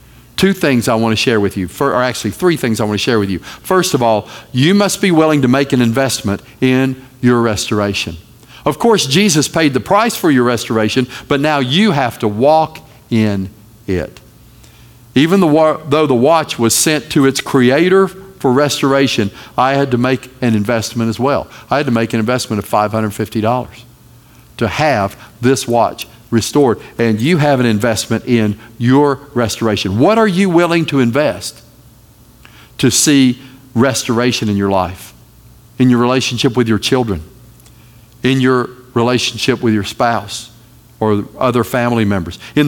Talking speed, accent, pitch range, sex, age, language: 165 wpm, American, 115-140 Hz, male, 50-69, English